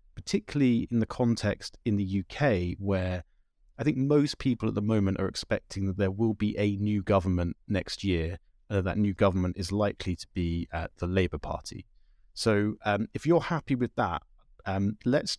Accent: British